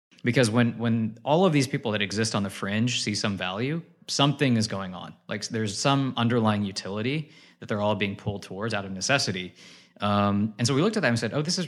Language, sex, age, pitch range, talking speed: English, male, 20-39, 105-125 Hz, 230 wpm